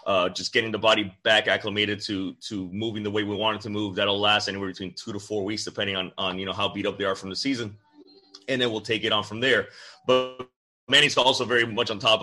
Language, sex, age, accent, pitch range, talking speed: English, male, 30-49, American, 100-120 Hz, 260 wpm